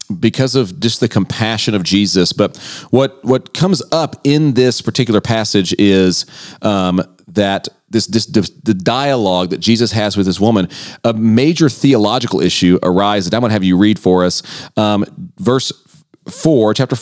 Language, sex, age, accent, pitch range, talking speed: English, male, 40-59, American, 95-120 Hz, 155 wpm